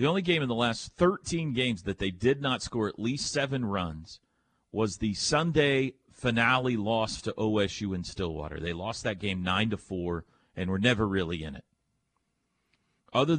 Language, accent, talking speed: English, American, 180 wpm